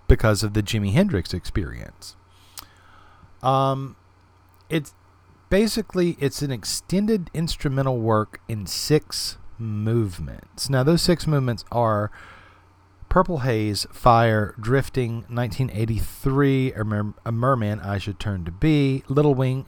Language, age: English, 40-59